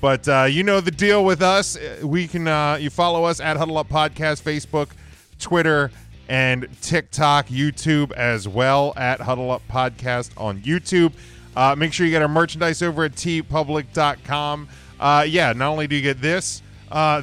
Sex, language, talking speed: male, English, 175 wpm